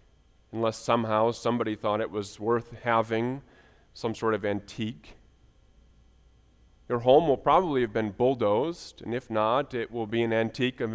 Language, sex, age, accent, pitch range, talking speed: English, male, 30-49, American, 110-140 Hz, 155 wpm